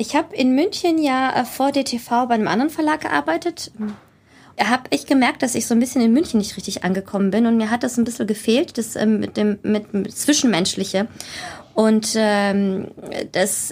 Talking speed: 185 wpm